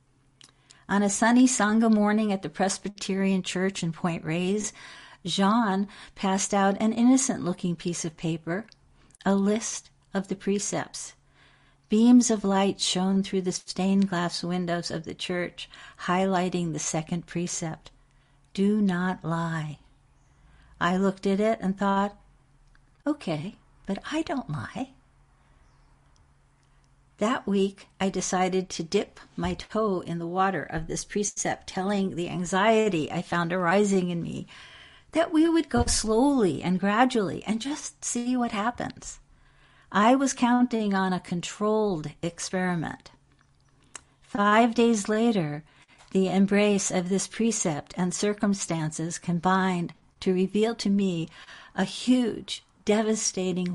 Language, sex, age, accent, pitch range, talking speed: English, female, 60-79, American, 170-210 Hz, 125 wpm